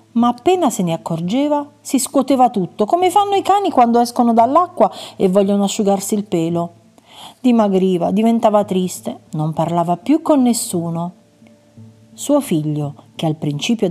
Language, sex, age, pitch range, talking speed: Italian, female, 40-59, 165-235 Hz, 140 wpm